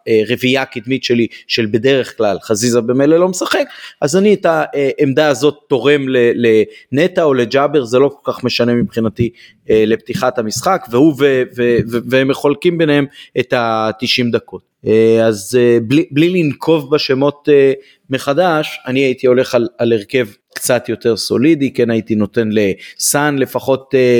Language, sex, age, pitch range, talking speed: Hebrew, male, 30-49, 110-135 Hz, 135 wpm